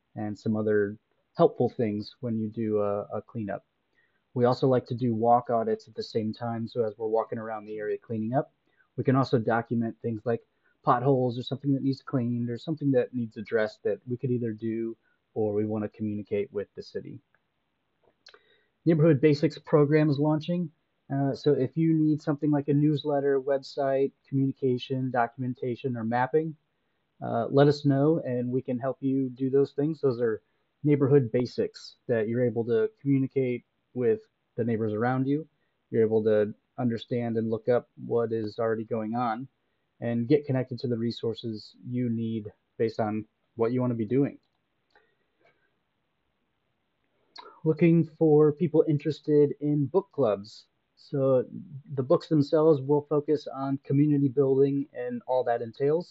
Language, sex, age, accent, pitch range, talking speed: English, male, 30-49, American, 115-145 Hz, 165 wpm